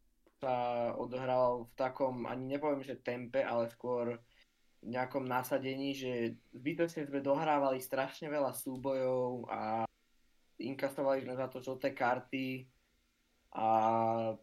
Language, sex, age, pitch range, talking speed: Slovak, male, 20-39, 120-140 Hz, 110 wpm